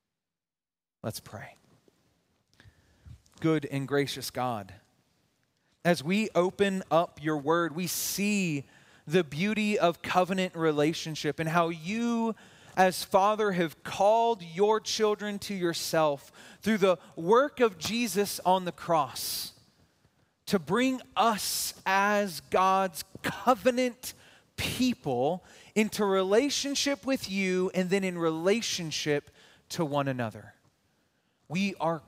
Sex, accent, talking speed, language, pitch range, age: male, American, 110 wpm, English, 155-210 Hz, 30-49